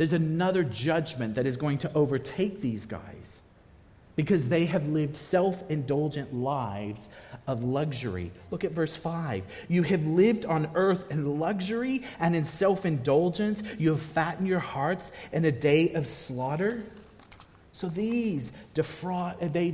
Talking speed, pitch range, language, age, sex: 135 wpm, 130-190 Hz, English, 40-59, male